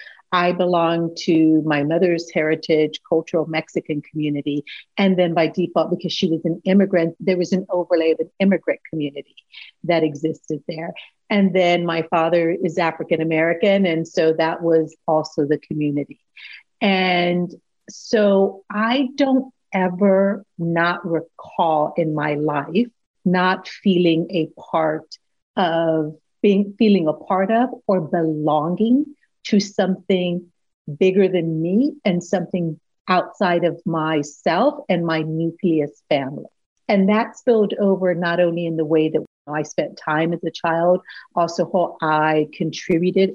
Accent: American